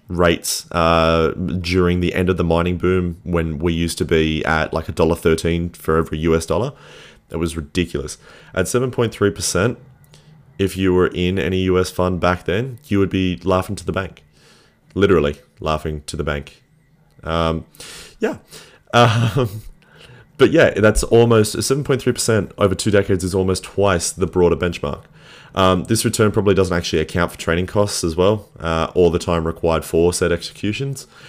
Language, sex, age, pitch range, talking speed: English, male, 30-49, 85-105 Hz, 170 wpm